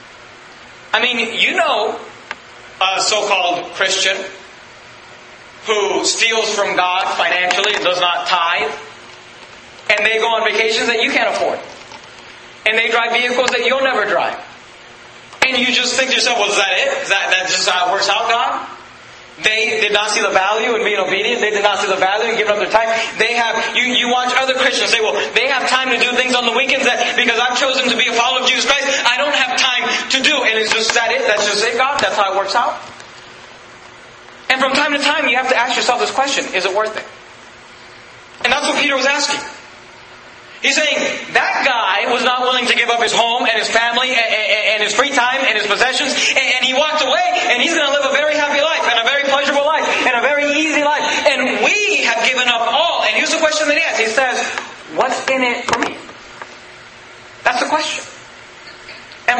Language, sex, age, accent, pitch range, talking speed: English, male, 30-49, American, 220-275 Hz, 220 wpm